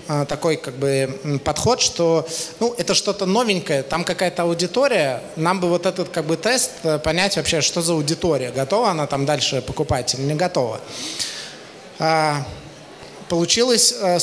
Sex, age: male, 20-39